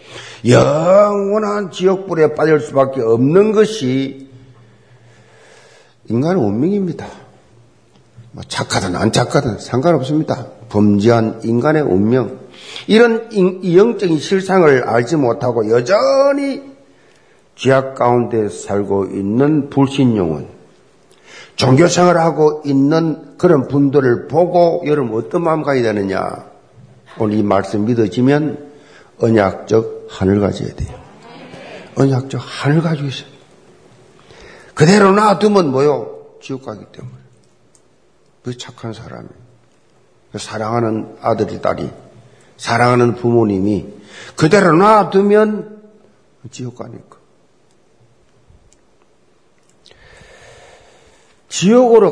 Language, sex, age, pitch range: Korean, male, 50-69, 115-175 Hz